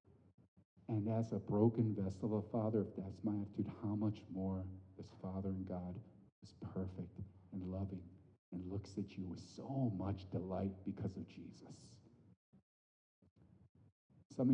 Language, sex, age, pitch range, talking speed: English, male, 50-69, 100-125 Hz, 145 wpm